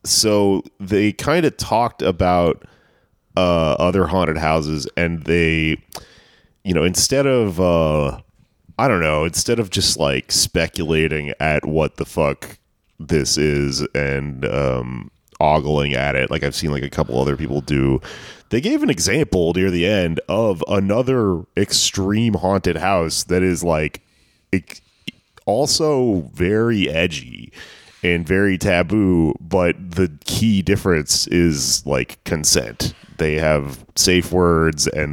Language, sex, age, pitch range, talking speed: English, male, 30-49, 75-95 Hz, 135 wpm